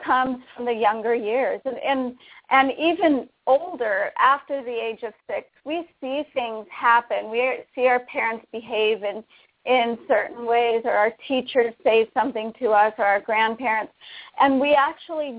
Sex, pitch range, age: female, 235-280 Hz, 40-59